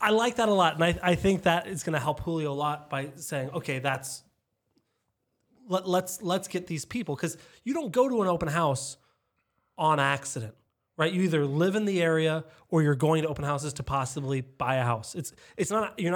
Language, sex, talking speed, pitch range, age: English, male, 215 wpm, 140-190 Hz, 30-49